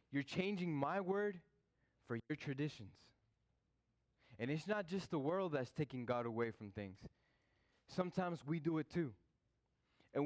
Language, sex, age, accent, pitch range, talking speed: English, male, 20-39, American, 115-155 Hz, 145 wpm